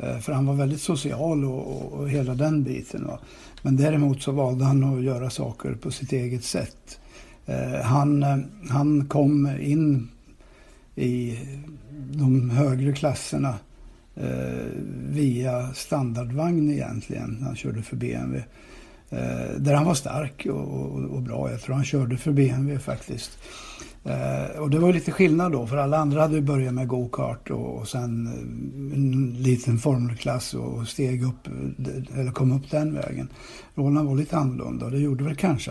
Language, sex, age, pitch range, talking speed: Swedish, male, 60-79, 125-145 Hz, 150 wpm